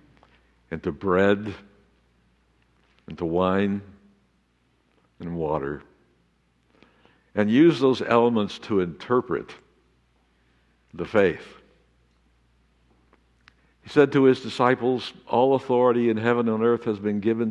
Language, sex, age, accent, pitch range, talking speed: English, male, 60-79, American, 70-100 Hz, 105 wpm